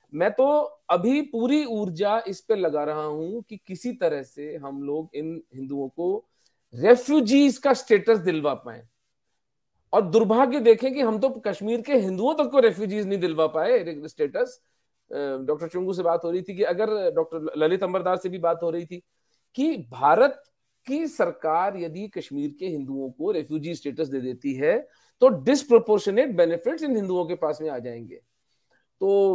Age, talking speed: 40-59, 145 wpm